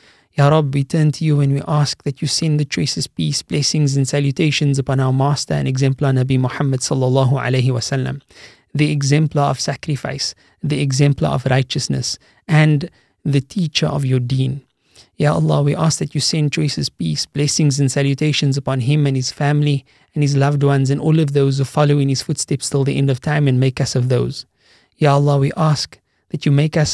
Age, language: 30-49, English